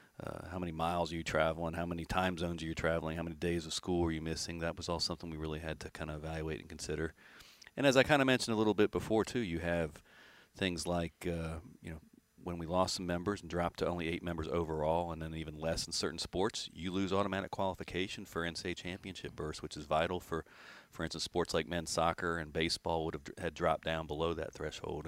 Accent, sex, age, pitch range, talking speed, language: American, male, 40-59, 80-90 Hz, 240 wpm, English